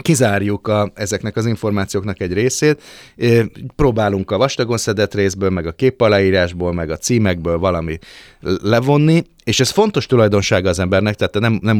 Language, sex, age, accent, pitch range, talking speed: English, male, 30-49, Finnish, 95-115 Hz, 150 wpm